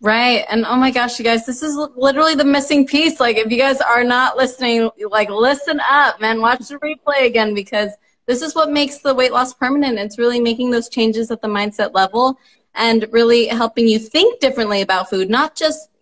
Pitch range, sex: 220-275 Hz, female